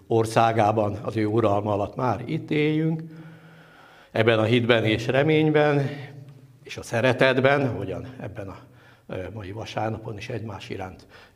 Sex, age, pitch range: male, 60-79, 110-140 Hz